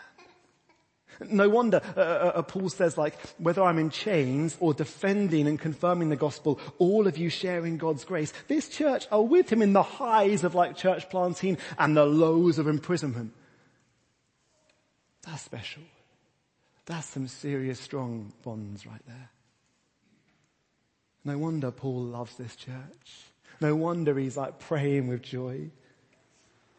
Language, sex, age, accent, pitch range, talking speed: English, male, 30-49, British, 135-175 Hz, 145 wpm